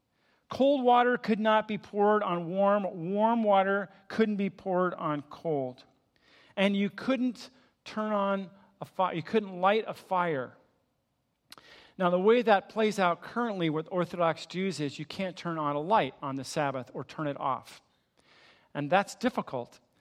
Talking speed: 160 wpm